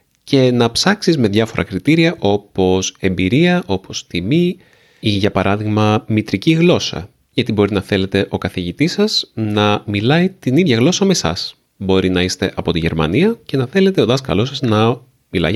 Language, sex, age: Greek, male, 30-49